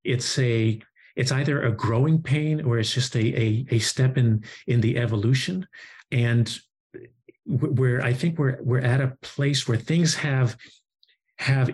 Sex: male